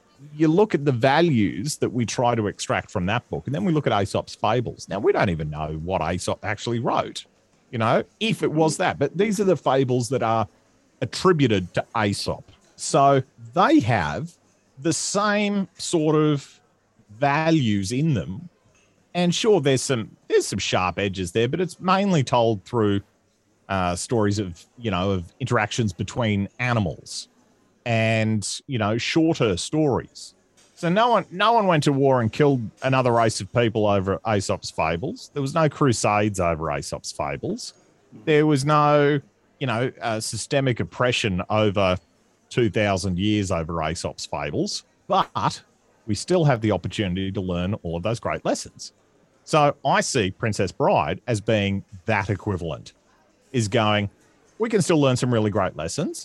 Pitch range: 100-145 Hz